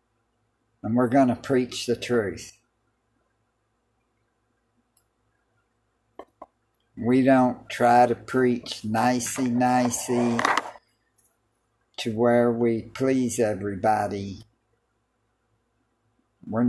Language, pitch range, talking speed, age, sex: English, 115-125 Hz, 65 wpm, 60-79, male